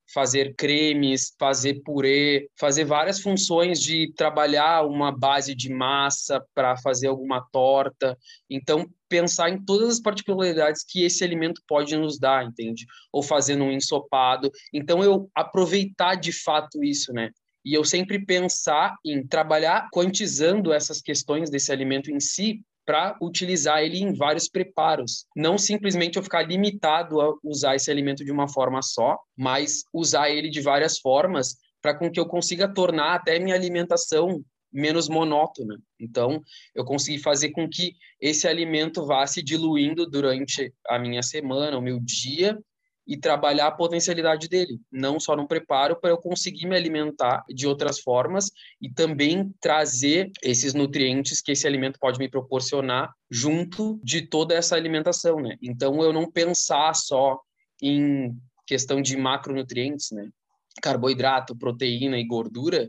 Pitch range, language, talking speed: 135-170 Hz, Portuguese, 150 wpm